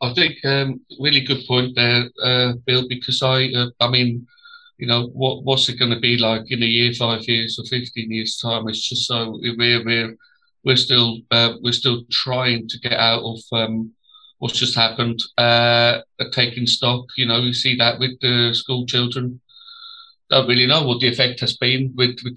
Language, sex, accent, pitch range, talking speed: English, male, British, 120-130 Hz, 195 wpm